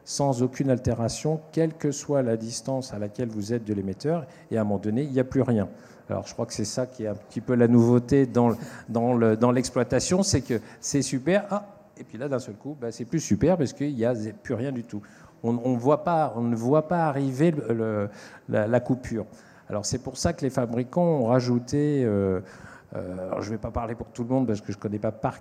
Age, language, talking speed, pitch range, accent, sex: 50-69, French, 255 wpm, 110-140 Hz, French, male